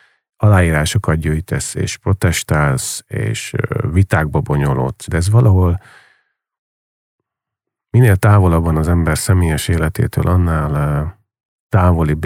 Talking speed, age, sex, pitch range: 90 wpm, 40-59, male, 80-110 Hz